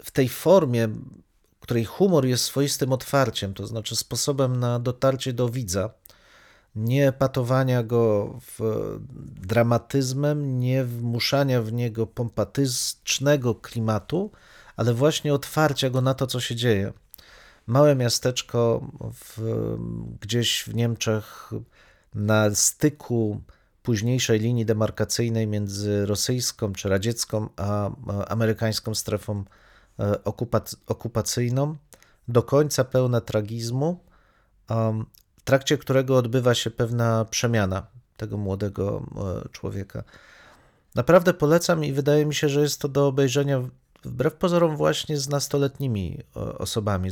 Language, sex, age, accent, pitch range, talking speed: Polish, male, 40-59, native, 110-135 Hz, 110 wpm